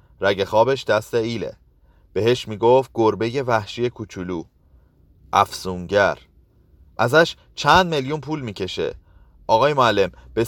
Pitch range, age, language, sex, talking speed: 90-130 Hz, 30-49, Persian, male, 105 wpm